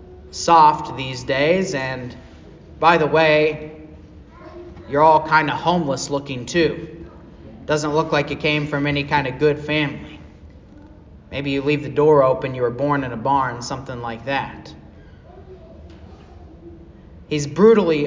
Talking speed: 140 wpm